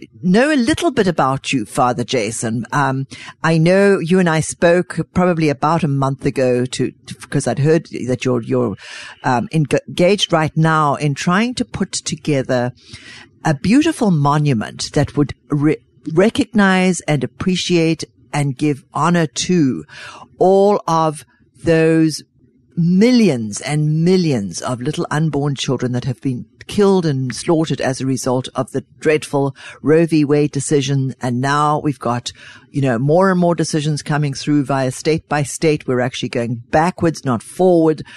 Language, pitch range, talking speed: English, 130-170 Hz, 150 wpm